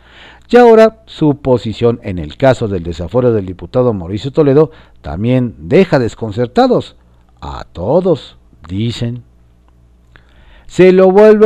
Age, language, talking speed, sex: 50-69, Spanish, 115 wpm, male